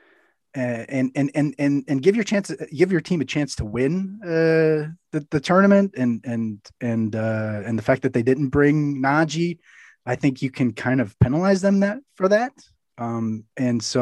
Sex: male